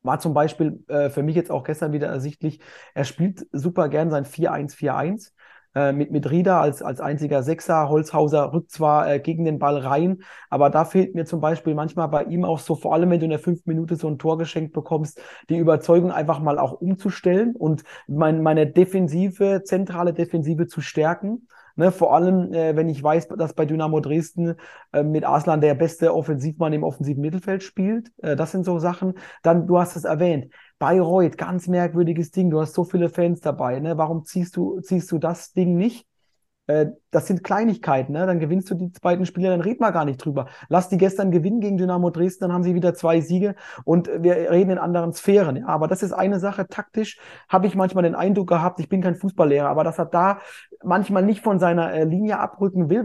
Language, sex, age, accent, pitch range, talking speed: German, male, 30-49, German, 155-185 Hz, 210 wpm